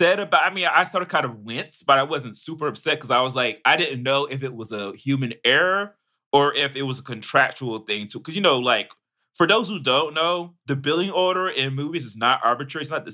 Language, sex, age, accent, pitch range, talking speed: English, male, 30-49, American, 115-145 Hz, 245 wpm